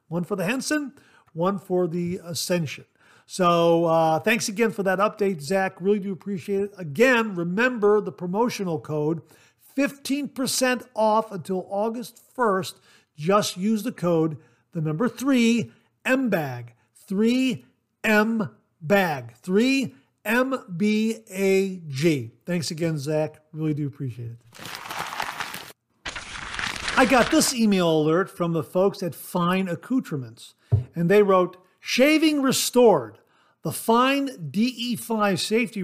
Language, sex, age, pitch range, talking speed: English, male, 50-69, 160-220 Hz, 115 wpm